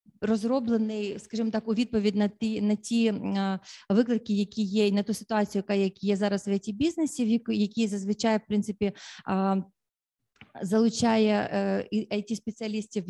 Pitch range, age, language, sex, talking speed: 200-225 Hz, 30-49, Ukrainian, female, 120 wpm